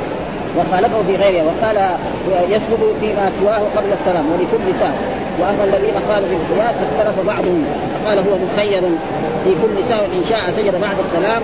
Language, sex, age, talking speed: Arabic, female, 30-49, 145 wpm